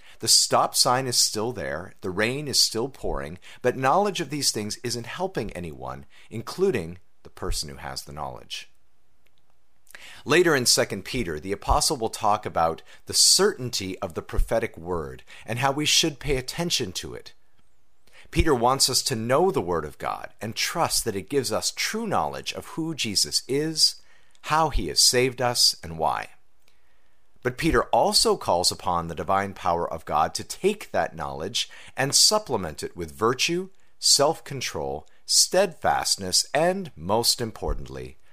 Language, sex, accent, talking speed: English, male, American, 160 wpm